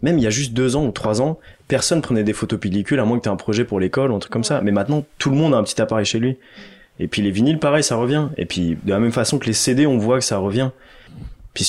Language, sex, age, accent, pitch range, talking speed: English, male, 20-39, French, 105-140 Hz, 305 wpm